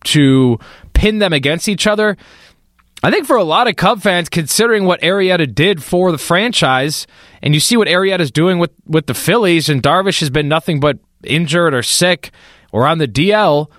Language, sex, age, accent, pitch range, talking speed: English, male, 20-39, American, 135-180 Hz, 190 wpm